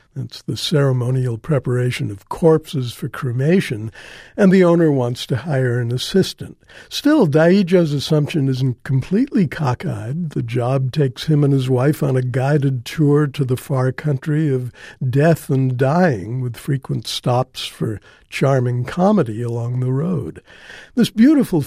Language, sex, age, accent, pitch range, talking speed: English, male, 60-79, American, 130-155 Hz, 145 wpm